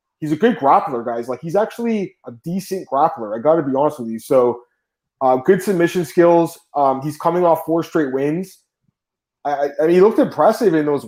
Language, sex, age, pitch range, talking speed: English, male, 20-39, 145-180 Hz, 200 wpm